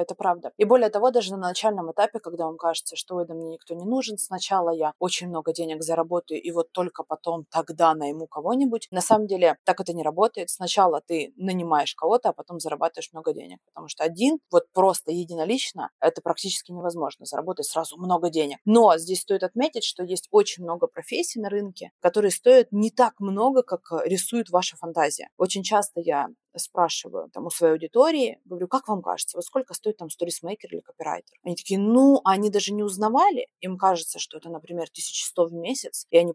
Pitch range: 170-220 Hz